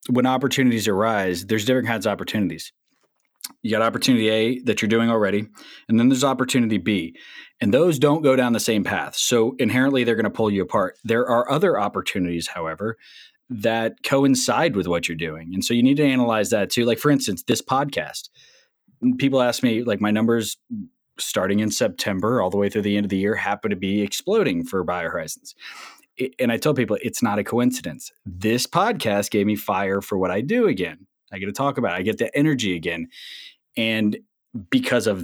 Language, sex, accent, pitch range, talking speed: English, male, American, 100-130 Hz, 200 wpm